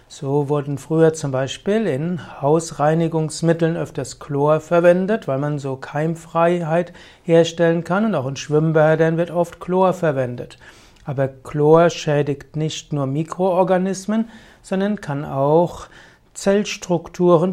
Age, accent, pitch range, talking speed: 60-79, German, 145-180 Hz, 115 wpm